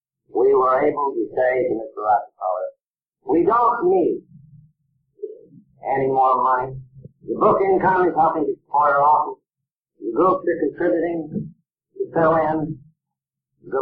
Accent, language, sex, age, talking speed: American, English, male, 50-69, 135 wpm